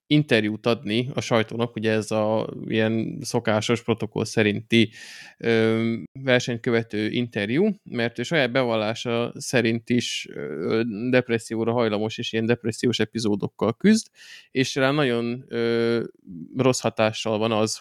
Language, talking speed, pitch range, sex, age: Hungarian, 120 wpm, 110-130 Hz, male, 20-39